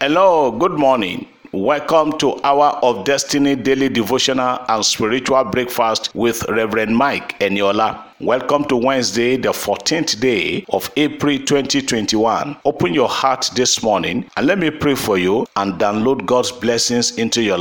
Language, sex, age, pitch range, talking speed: English, male, 50-69, 115-135 Hz, 145 wpm